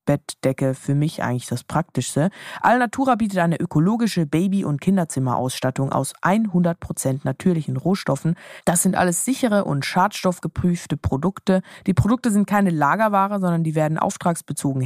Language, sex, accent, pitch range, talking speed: German, female, German, 145-205 Hz, 135 wpm